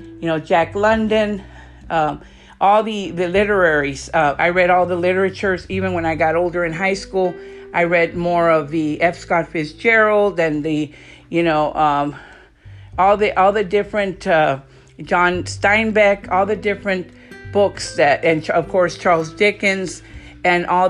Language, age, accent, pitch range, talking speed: English, 50-69, American, 160-195 Hz, 160 wpm